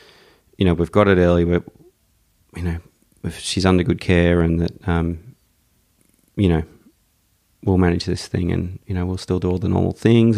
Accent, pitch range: Australian, 85-100 Hz